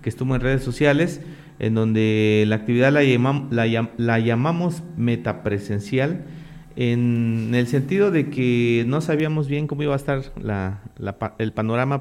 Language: Spanish